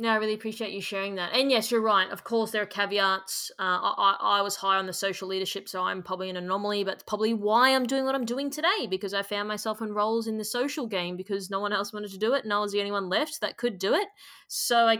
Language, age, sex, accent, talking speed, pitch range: English, 20-39, female, Australian, 285 wpm, 200-255 Hz